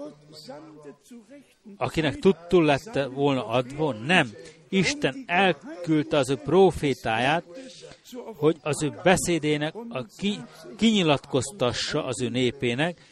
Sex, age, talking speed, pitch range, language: male, 60-79, 95 wpm, 135-195 Hz, Hungarian